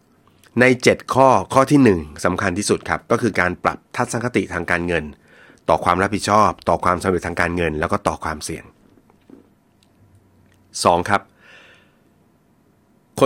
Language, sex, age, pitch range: Thai, male, 30-49, 90-120 Hz